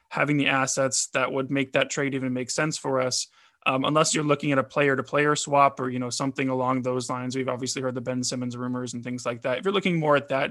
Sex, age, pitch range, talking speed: male, 20-39, 130-145 Hz, 270 wpm